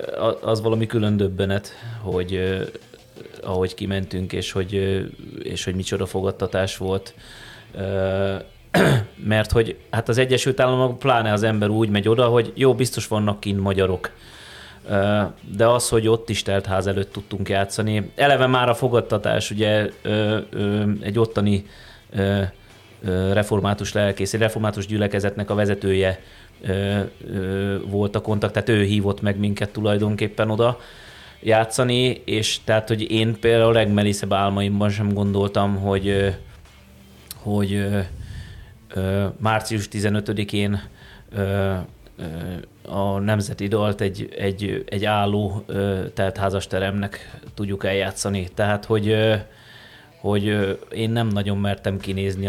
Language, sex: Hungarian, male